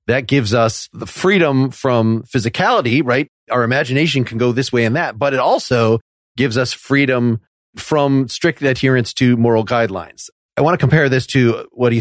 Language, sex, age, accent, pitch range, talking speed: English, male, 30-49, American, 115-140 Hz, 180 wpm